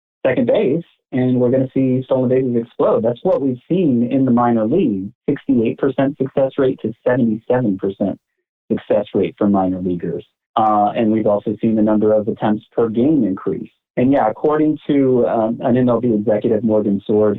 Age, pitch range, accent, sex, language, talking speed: 40-59, 105-135 Hz, American, male, English, 175 wpm